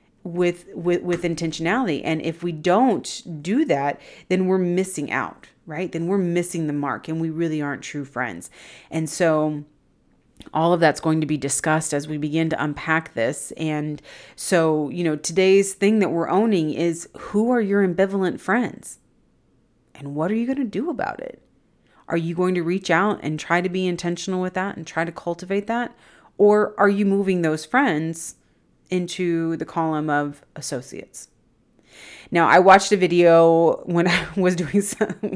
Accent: American